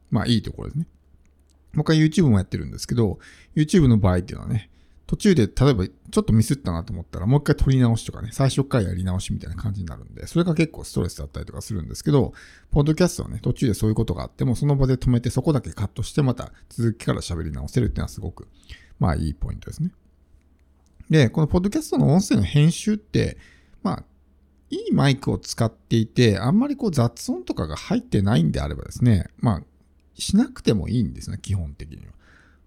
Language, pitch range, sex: Japanese, 85-140 Hz, male